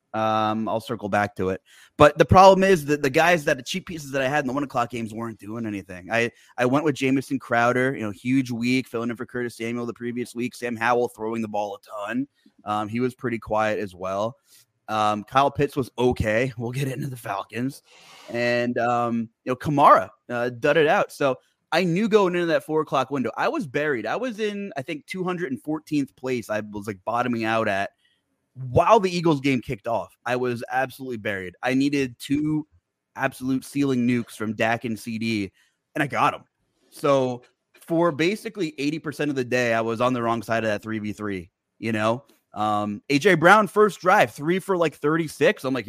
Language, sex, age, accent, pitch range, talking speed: English, male, 20-39, American, 115-150 Hz, 205 wpm